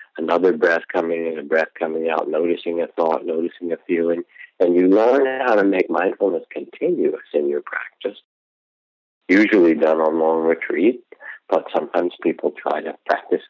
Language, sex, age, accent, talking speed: English, male, 60-79, American, 160 wpm